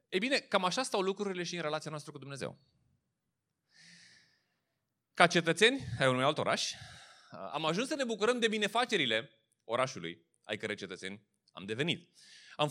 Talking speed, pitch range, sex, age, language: 150 wpm, 115-195 Hz, male, 30-49, Romanian